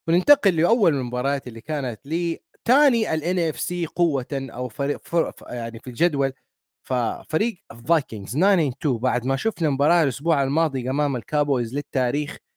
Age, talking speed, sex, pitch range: 30-49, 135 wpm, male, 130-185 Hz